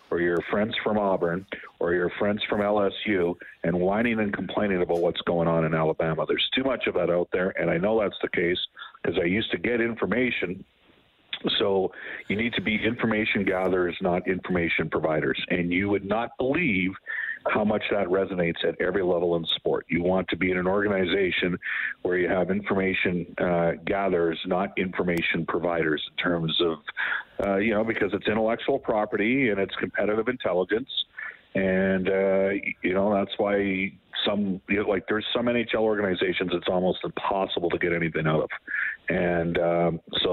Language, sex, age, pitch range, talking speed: English, male, 50-69, 85-100 Hz, 175 wpm